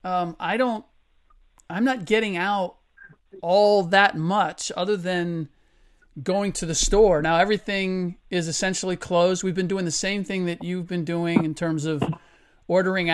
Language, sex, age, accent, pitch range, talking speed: English, male, 40-59, American, 165-190 Hz, 160 wpm